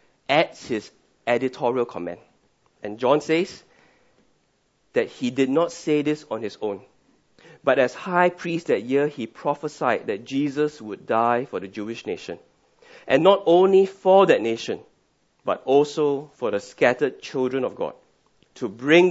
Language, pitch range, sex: English, 130-185 Hz, male